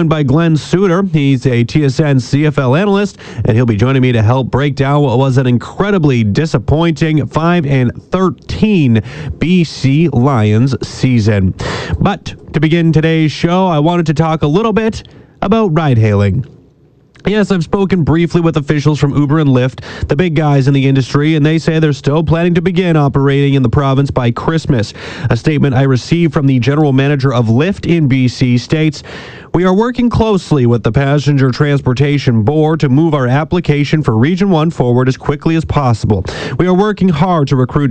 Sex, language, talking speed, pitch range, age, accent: male, English, 180 wpm, 130-165 Hz, 30-49, American